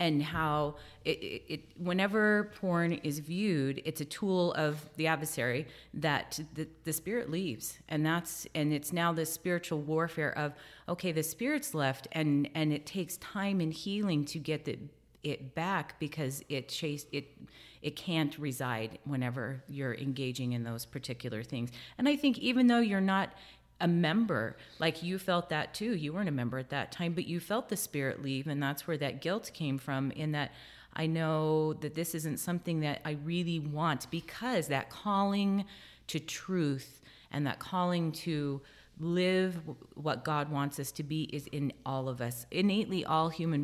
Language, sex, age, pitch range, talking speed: English, female, 30-49, 140-175 Hz, 175 wpm